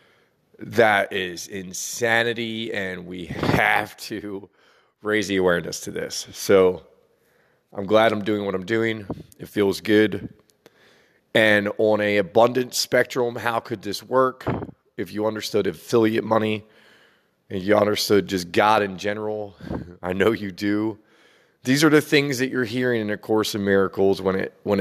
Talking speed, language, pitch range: 150 wpm, English, 100-120 Hz